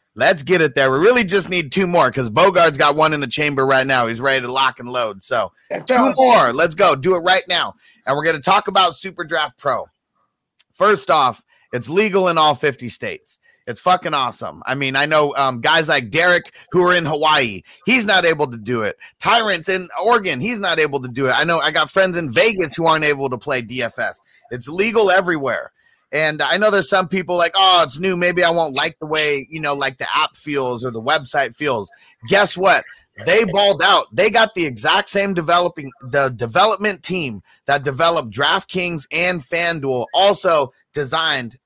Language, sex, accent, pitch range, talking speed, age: English, male, American, 140-190 Hz, 210 wpm, 30-49